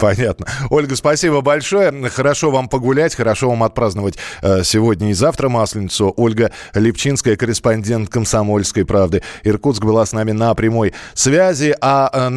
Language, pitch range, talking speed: Russian, 100-135 Hz, 140 wpm